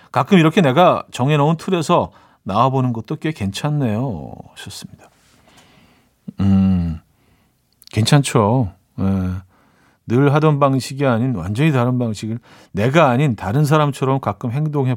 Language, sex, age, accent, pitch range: Korean, male, 40-59, native, 115-155 Hz